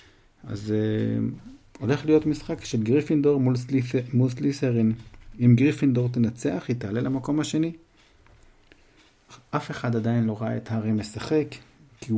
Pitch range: 110-130 Hz